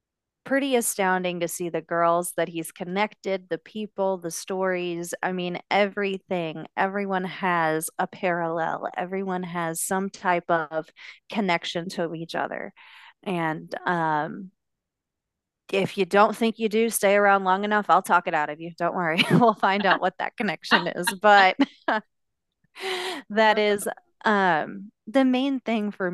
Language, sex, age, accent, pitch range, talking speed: English, female, 30-49, American, 175-210 Hz, 145 wpm